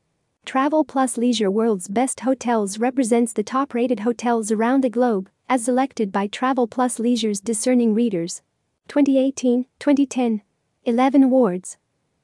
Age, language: 40-59, English